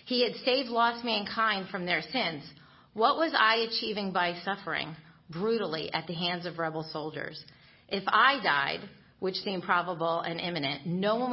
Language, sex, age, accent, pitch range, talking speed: English, female, 40-59, American, 160-220 Hz, 165 wpm